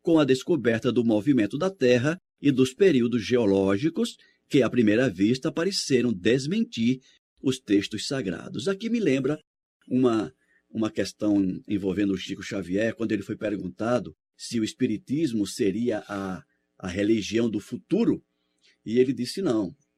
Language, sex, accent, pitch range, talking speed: Portuguese, male, Brazilian, 100-135 Hz, 140 wpm